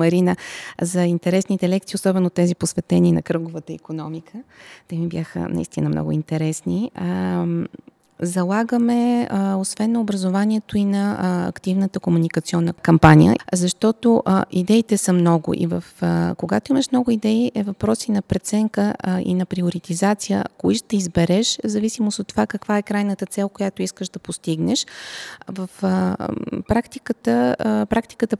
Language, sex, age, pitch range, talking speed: Bulgarian, female, 20-39, 170-210 Hz, 135 wpm